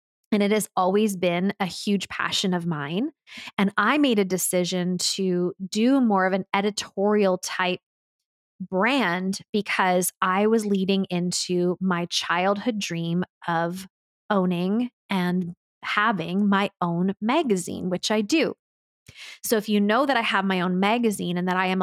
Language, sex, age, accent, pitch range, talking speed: English, female, 20-39, American, 180-215 Hz, 150 wpm